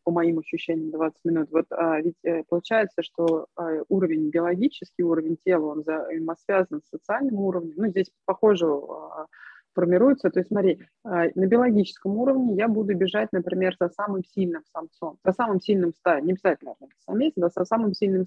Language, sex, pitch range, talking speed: Russian, female, 180-220 Hz, 170 wpm